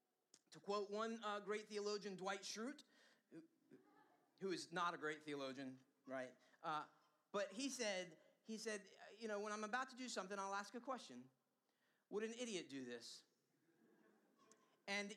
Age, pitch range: 30-49, 200-270 Hz